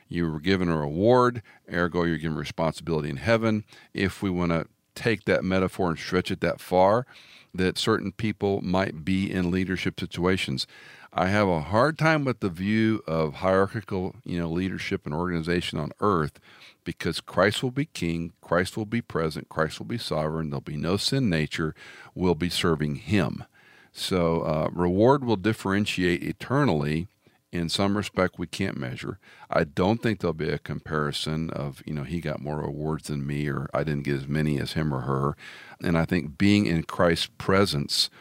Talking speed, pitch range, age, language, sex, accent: 180 wpm, 75-95 Hz, 50-69, English, male, American